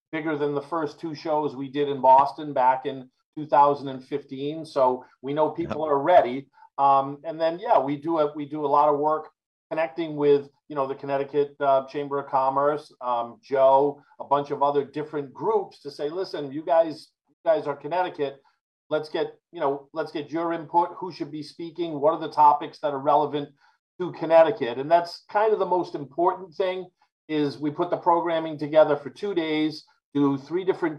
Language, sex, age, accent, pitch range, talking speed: English, male, 50-69, American, 140-165 Hz, 195 wpm